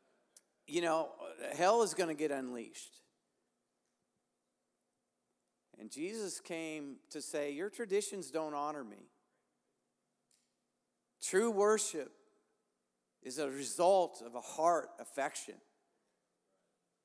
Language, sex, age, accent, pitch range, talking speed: English, male, 50-69, American, 155-195 Hz, 95 wpm